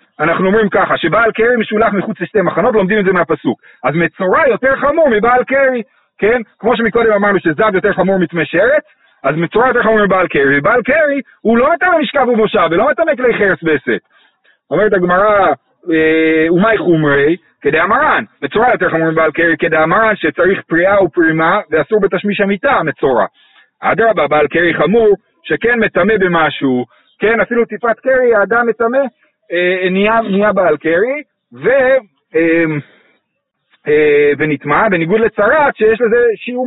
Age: 40-59